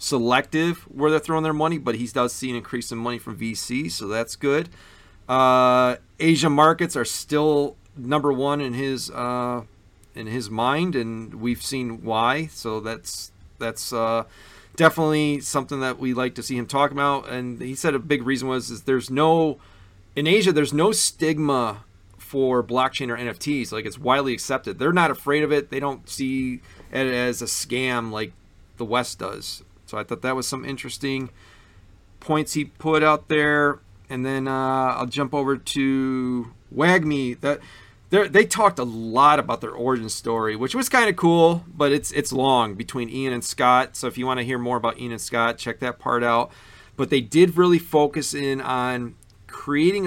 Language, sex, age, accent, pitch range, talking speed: English, male, 40-59, American, 115-145 Hz, 185 wpm